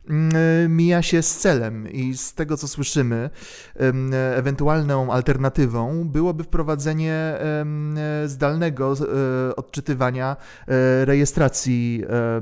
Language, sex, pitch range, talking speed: Polish, male, 125-140 Hz, 75 wpm